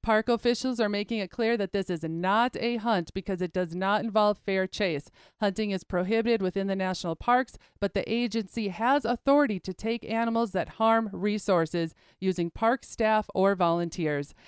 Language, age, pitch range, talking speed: English, 30-49, 190-230 Hz, 175 wpm